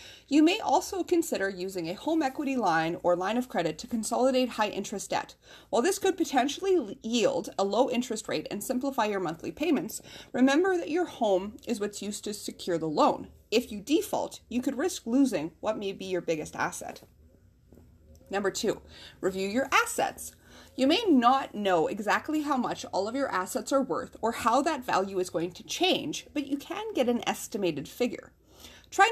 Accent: American